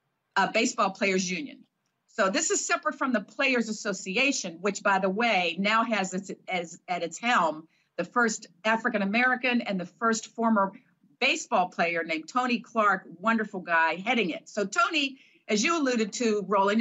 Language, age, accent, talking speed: English, 50-69, American, 165 wpm